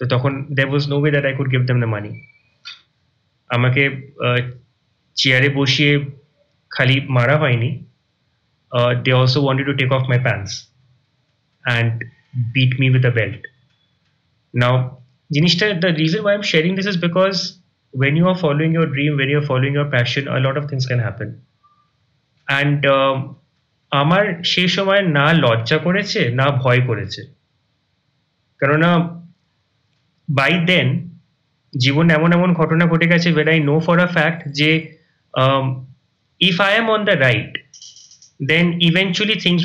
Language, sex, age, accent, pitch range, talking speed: Bengali, male, 30-49, native, 130-165 Hz, 130 wpm